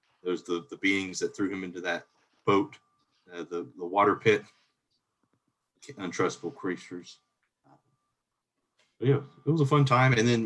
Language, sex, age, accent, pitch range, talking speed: English, male, 40-59, American, 90-125 Hz, 145 wpm